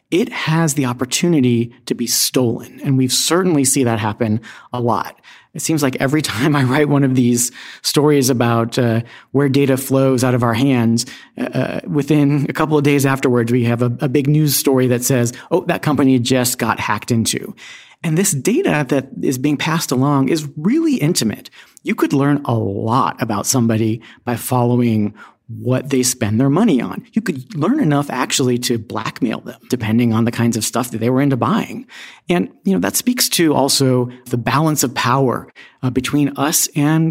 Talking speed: 190 wpm